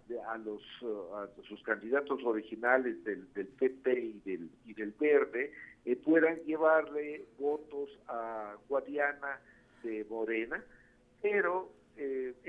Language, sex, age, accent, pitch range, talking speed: Spanish, male, 60-79, Mexican, 120-160 Hz, 115 wpm